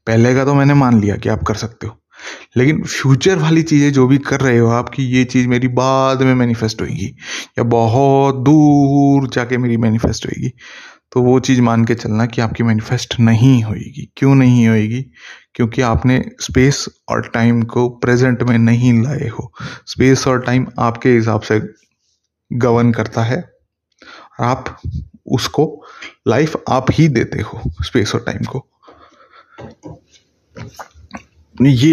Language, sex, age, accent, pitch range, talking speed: Hindi, male, 20-39, native, 110-135 Hz, 155 wpm